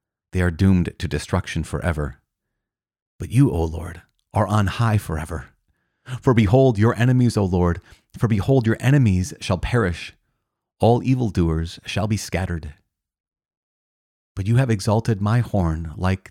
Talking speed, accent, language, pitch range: 140 wpm, American, English, 90-110 Hz